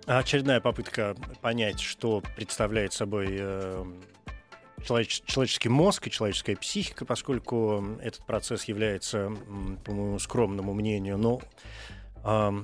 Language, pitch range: Russian, 100-130 Hz